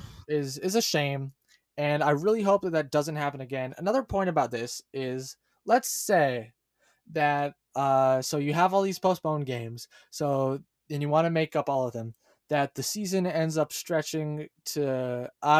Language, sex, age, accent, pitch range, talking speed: English, male, 20-39, American, 145-185 Hz, 180 wpm